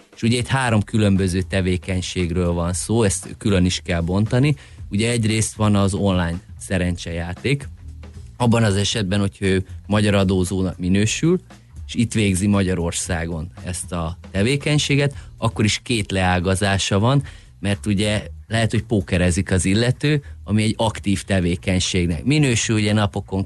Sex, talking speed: male, 135 wpm